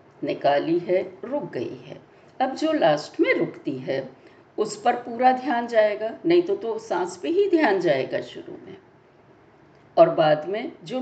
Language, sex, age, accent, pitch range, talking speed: Hindi, female, 50-69, native, 235-350 Hz, 165 wpm